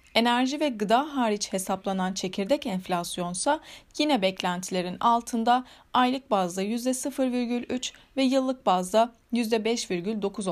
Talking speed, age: 95 wpm, 30-49